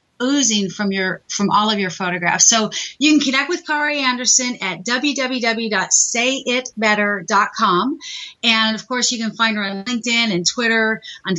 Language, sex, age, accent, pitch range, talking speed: English, female, 40-59, American, 205-250 Hz, 155 wpm